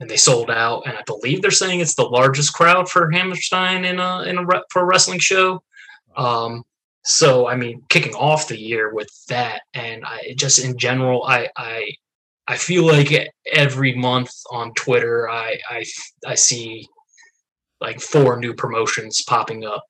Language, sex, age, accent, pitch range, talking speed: English, male, 20-39, American, 120-155 Hz, 175 wpm